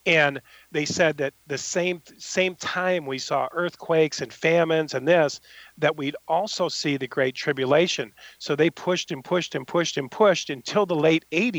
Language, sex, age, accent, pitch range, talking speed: English, male, 40-59, American, 150-200 Hz, 175 wpm